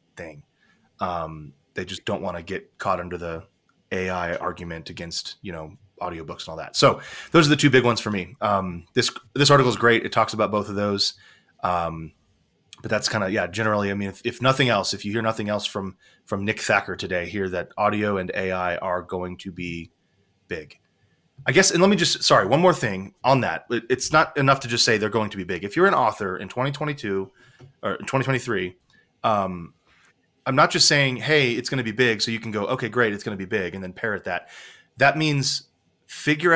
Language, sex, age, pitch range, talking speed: English, male, 30-49, 95-130 Hz, 220 wpm